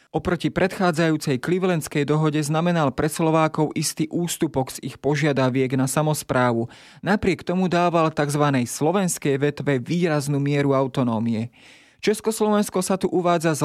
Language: Slovak